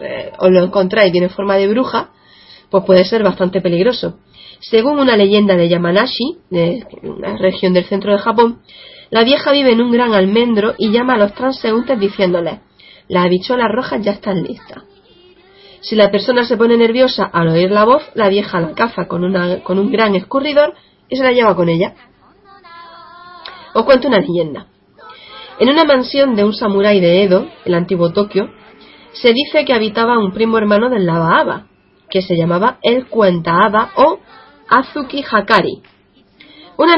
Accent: Spanish